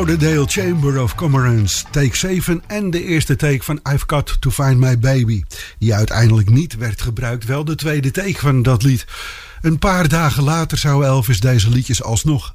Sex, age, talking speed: male, 50-69, 185 wpm